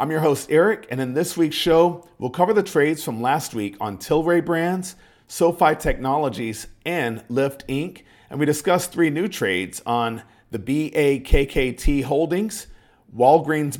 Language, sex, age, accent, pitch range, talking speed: English, male, 50-69, American, 115-160 Hz, 150 wpm